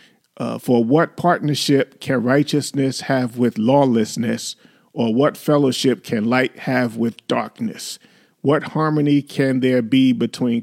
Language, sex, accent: English, male, American